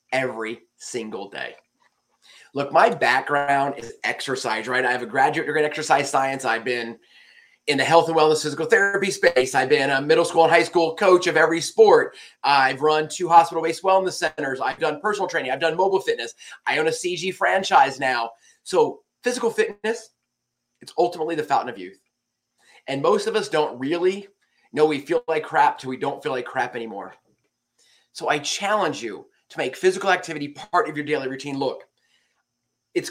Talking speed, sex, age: 185 wpm, male, 30-49